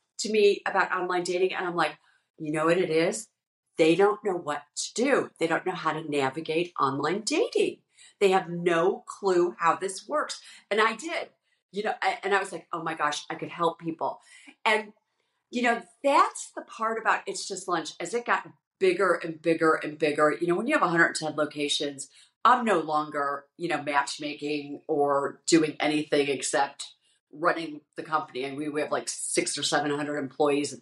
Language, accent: English, American